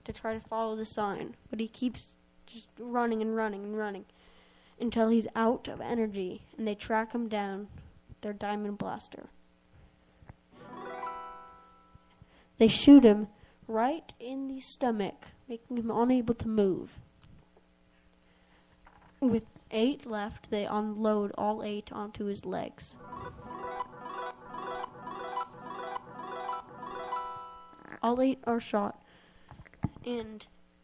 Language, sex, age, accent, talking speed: English, female, 20-39, American, 110 wpm